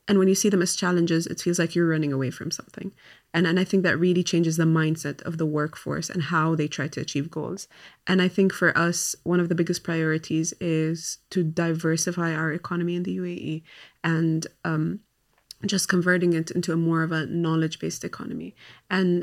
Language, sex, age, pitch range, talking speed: English, female, 20-39, 160-185 Hz, 205 wpm